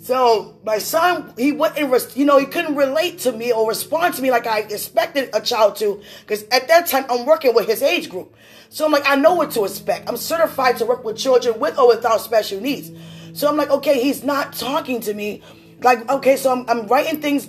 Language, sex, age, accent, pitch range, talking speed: English, female, 20-39, American, 225-280 Hz, 230 wpm